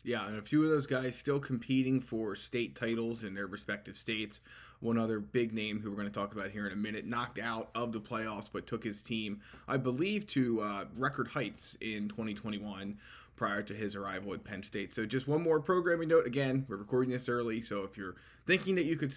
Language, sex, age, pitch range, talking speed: English, male, 20-39, 105-135 Hz, 225 wpm